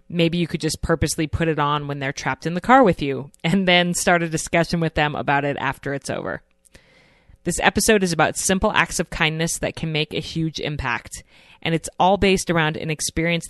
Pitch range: 145-175 Hz